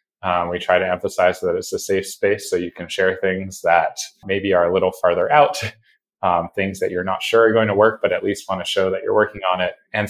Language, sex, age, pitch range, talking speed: English, male, 20-39, 95-120 Hz, 260 wpm